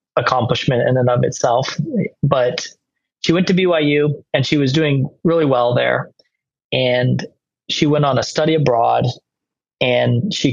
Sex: male